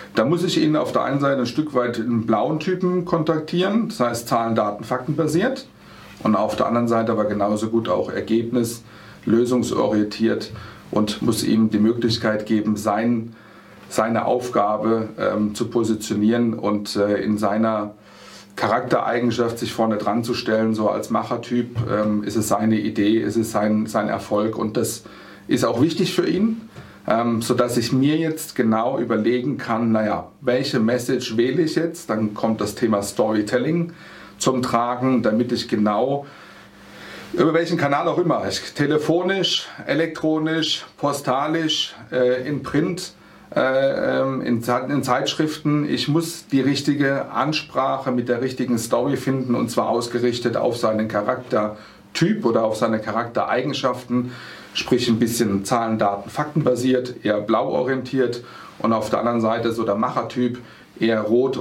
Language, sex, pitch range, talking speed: German, male, 110-135 Hz, 145 wpm